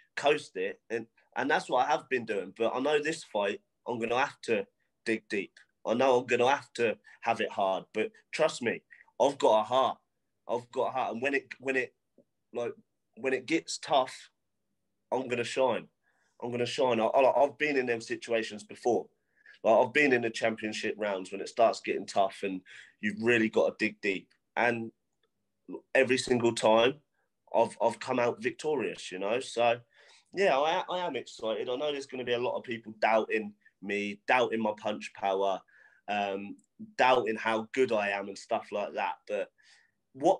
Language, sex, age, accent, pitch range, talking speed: English, male, 30-49, British, 110-150 Hz, 195 wpm